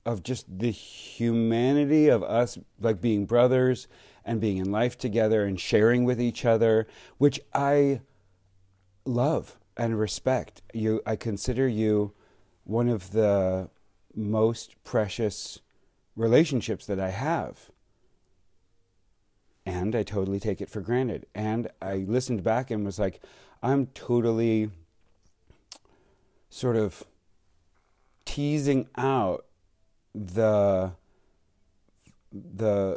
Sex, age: male, 40-59